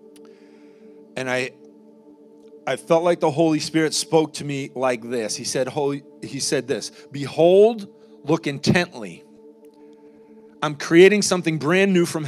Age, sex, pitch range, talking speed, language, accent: 40-59, male, 140-180 Hz, 135 wpm, English, American